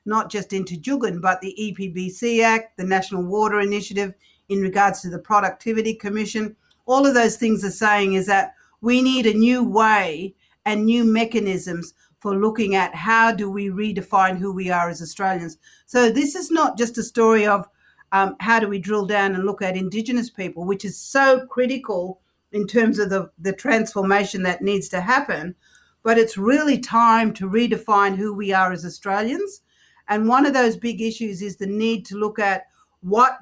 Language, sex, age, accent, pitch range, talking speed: English, female, 50-69, Australian, 200-235 Hz, 185 wpm